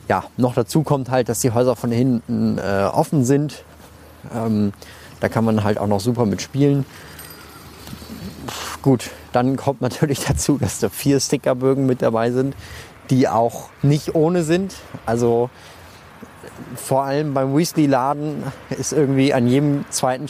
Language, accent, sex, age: German, German, male, 20-39